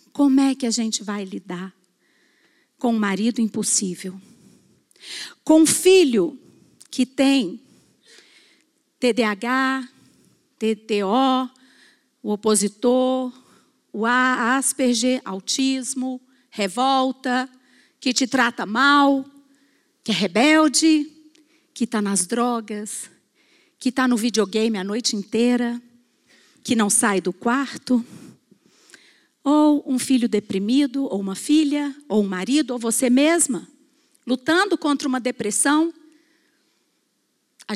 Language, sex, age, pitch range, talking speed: Portuguese, female, 50-69, 220-295 Hz, 105 wpm